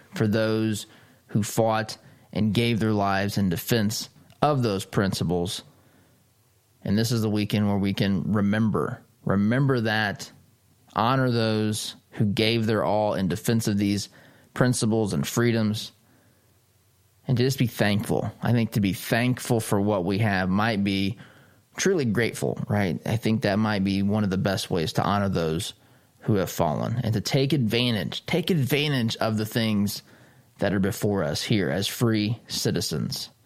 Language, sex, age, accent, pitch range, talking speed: English, male, 20-39, American, 105-125 Hz, 160 wpm